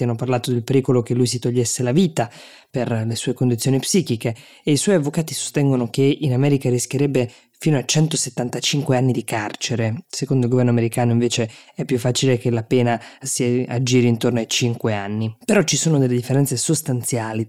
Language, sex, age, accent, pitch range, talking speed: Italian, female, 20-39, native, 120-145 Hz, 180 wpm